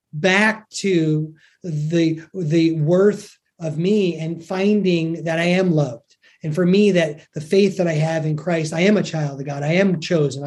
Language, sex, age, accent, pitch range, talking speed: English, male, 30-49, American, 165-200 Hz, 190 wpm